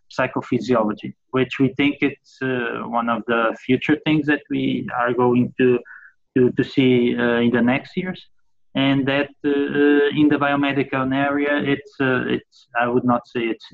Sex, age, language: male, 20-39, English